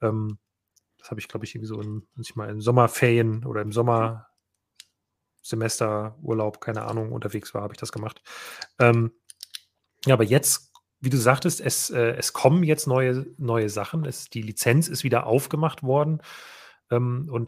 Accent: German